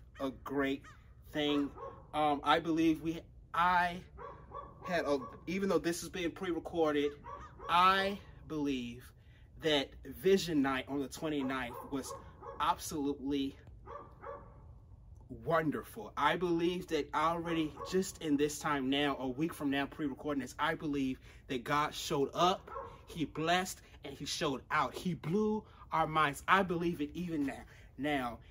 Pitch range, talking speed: 135-170 Hz, 135 wpm